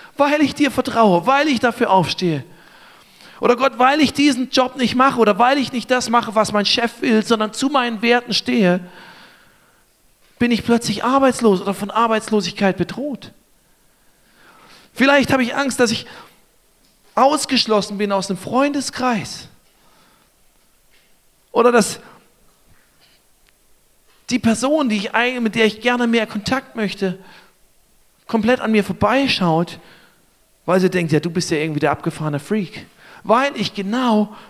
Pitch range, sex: 200-250 Hz, male